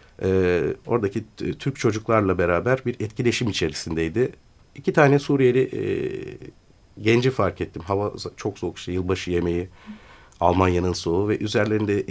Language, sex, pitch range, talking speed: Turkish, male, 95-130 Hz, 115 wpm